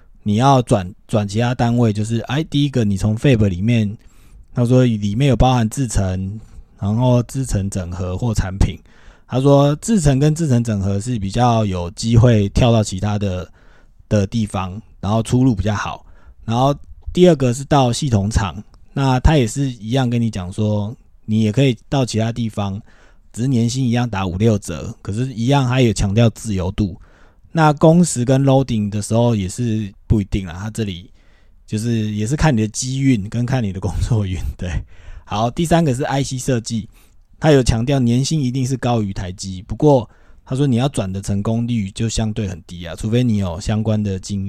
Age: 20-39